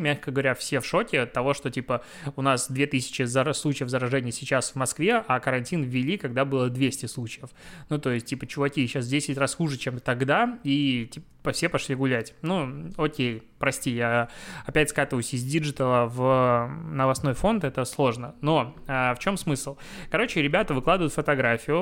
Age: 20-39